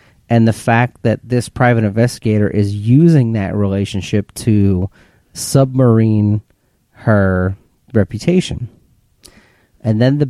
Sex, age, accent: male, 40-59, American